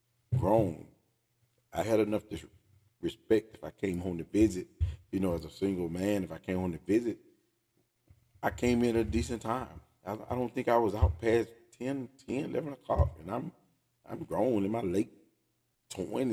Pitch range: 90-110 Hz